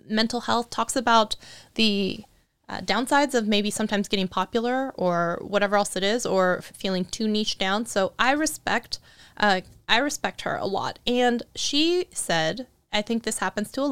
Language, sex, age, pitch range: English, female, 20-39, 195-240 Hz